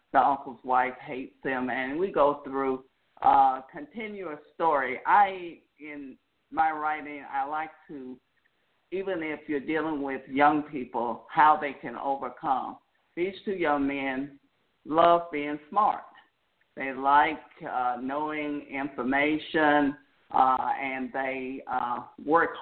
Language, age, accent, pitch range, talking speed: English, 50-69, American, 135-160 Hz, 125 wpm